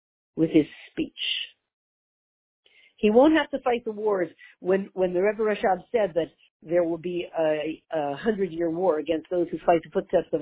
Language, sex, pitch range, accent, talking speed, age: English, female, 175-235 Hz, American, 180 wpm, 50-69